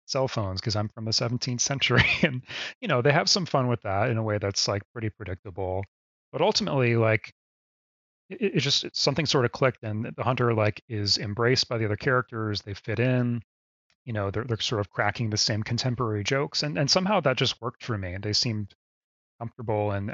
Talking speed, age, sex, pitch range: 220 wpm, 30-49, male, 100-120 Hz